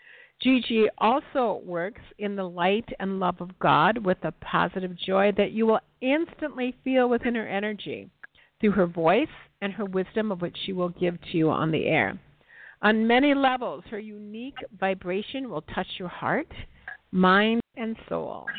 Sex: female